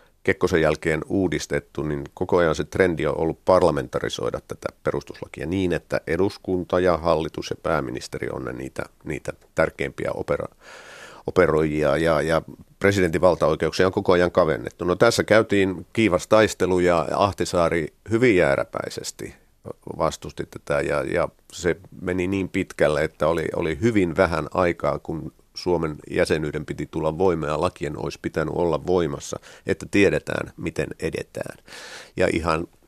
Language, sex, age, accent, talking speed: Finnish, male, 50-69, native, 135 wpm